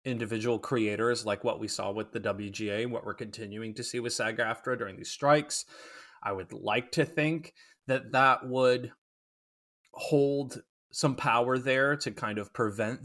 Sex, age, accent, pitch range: male, 20-39, American, 110-145 Hz